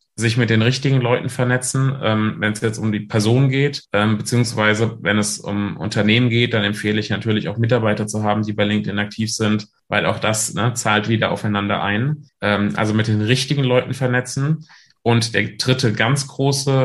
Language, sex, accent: German, male, German